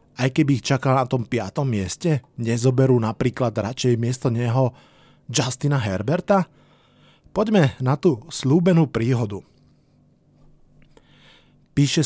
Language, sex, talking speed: Slovak, male, 105 wpm